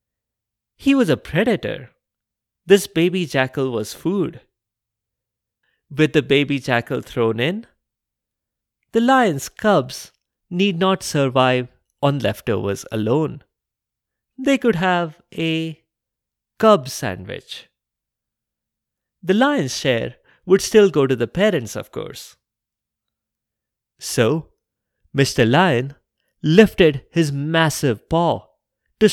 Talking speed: 100 wpm